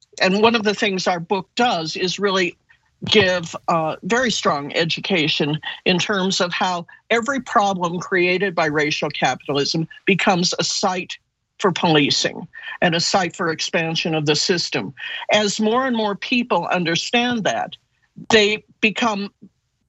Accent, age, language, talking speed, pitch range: American, 50-69, English, 140 wpm, 160-205 Hz